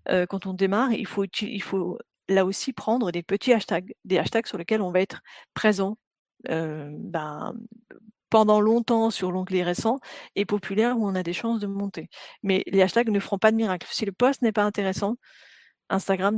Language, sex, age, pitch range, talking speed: French, female, 40-59, 185-220 Hz, 190 wpm